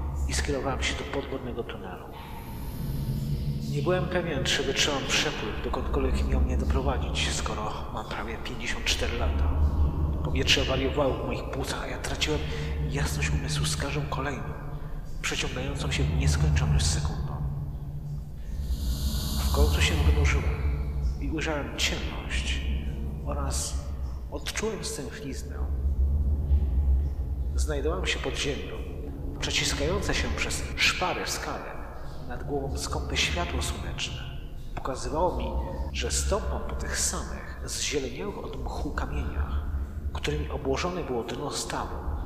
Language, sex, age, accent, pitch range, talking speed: Polish, male, 40-59, native, 70-75 Hz, 110 wpm